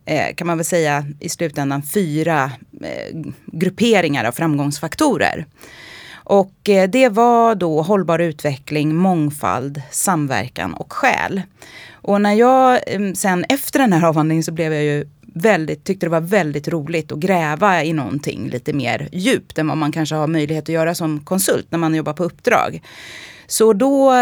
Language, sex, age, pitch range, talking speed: Swedish, female, 30-49, 150-200 Hz, 155 wpm